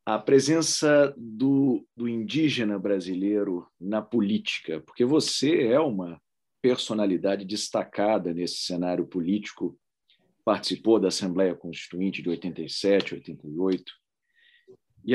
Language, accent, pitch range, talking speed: Portuguese, Brazilian, 95-145 Hz, 100 wpm